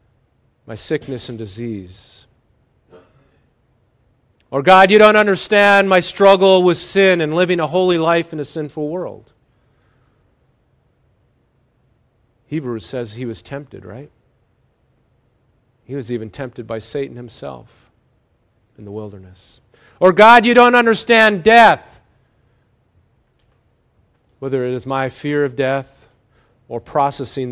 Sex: male